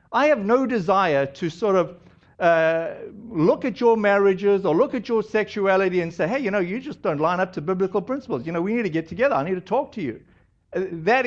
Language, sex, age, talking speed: English, male, 60-79, 235 wpm